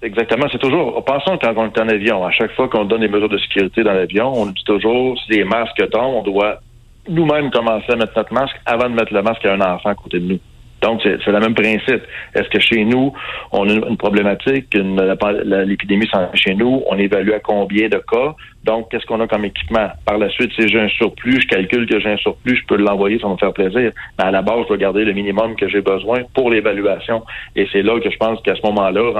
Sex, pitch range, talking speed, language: male, 100-115 Hz, 245 wpm, French